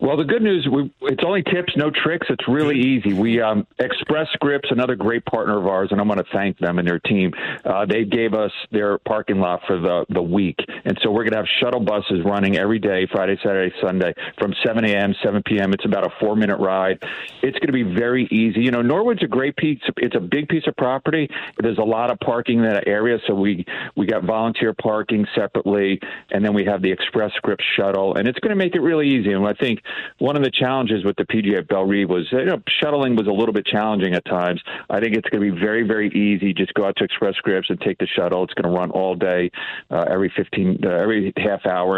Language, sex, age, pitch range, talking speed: English, male, 50-69, 95-120 Hz, 245 wpm